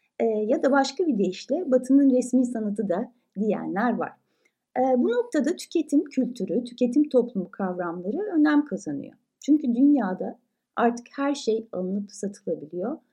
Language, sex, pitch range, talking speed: Turkish, female, 200-290 Hz, 125 wpm